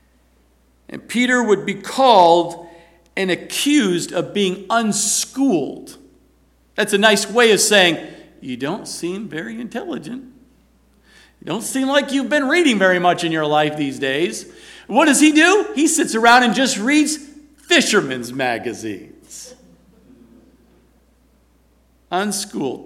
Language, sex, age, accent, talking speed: English, male, 50-69, American, 125 wpm